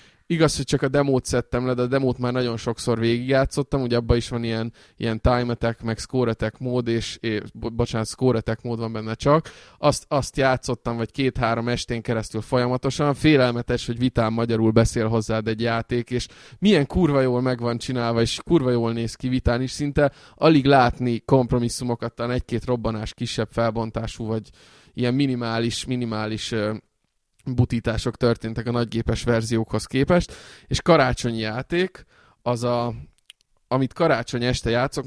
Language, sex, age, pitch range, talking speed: Hungarian, male, 20-39, 115-125 Hz, 155 wpm